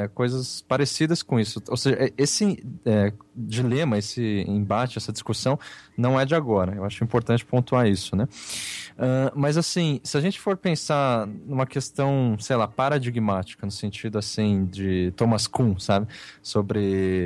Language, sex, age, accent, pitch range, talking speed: Portuguese, male, 20-39, Brazilian, 110-140 Hz, 145 wpm